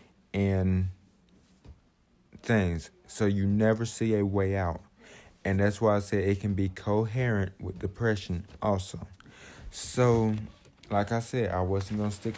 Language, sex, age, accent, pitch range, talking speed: English, male, 20-39, American, 95-110 Hz, 140 wpm